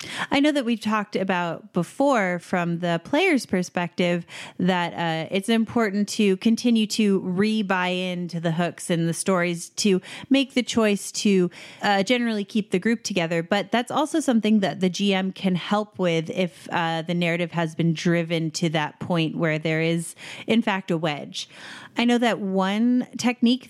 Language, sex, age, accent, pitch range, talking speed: English, female, 30-49, American, 170-215 Hz, 170 wpm